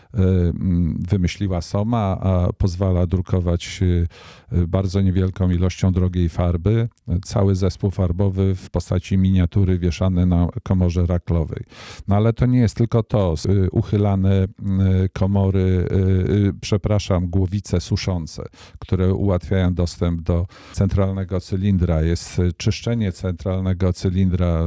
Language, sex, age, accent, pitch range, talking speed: Polish, male, 50-69, native, 90-100 Hz, 100 wpm